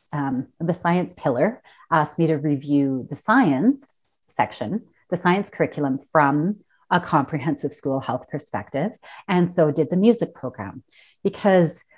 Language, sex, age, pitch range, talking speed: English, female, 40-59, 145-195 Hz, 135 wpm